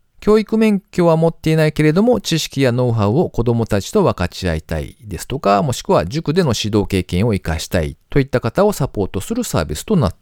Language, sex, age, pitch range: Japanese, male, 40-59, 95-160 Hz